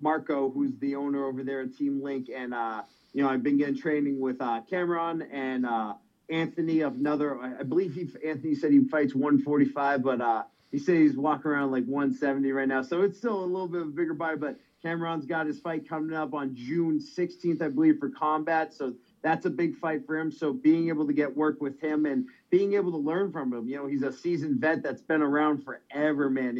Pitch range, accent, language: 135-160 Hz, American, English